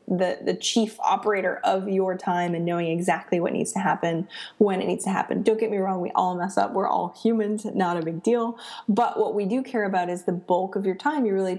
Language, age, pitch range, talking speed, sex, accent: English, 20-39, 175-220 Hz, 250 wpm, female, American